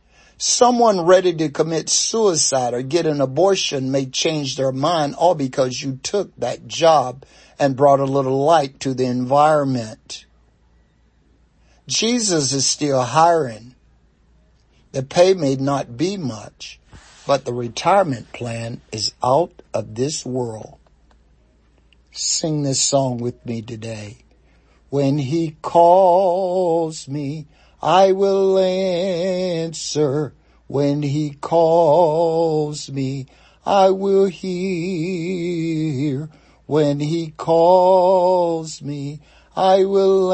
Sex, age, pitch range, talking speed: male, 60-79, 135-180 Hz, 105 wpm